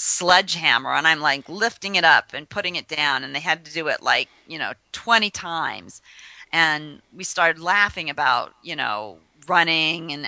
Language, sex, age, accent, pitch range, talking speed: English, female, 40-59, American, 150-175 Hz, 180 wpm